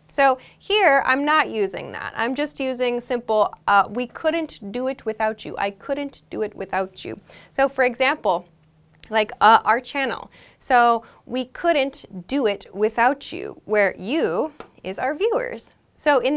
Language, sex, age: English, female, 10-29